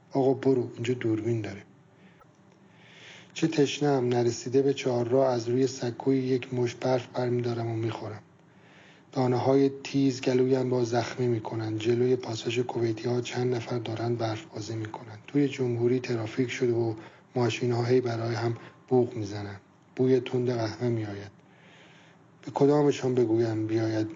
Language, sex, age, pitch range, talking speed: Persian, male, 40-59, 115-130 Hz, 135 wpm